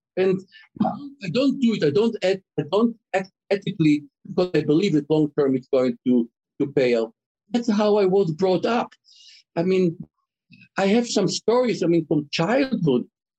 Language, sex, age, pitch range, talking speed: English, male, 60-79, 135-190 Hz, 165 wpm